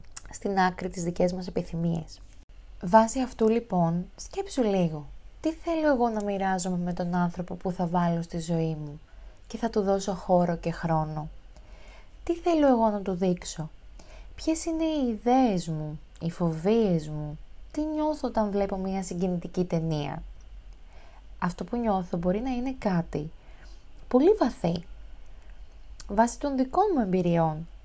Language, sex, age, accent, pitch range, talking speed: Greek, female, 20-39, native, 165-210 Hz, 145 wpm